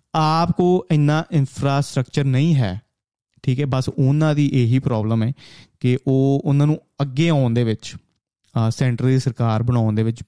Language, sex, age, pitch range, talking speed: Punjabi, male, 30-49, 120-145 Hz, 160 wpm